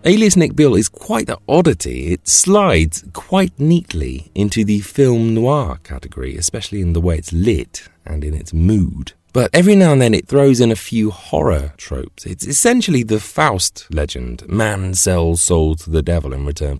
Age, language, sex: 30-49, English, male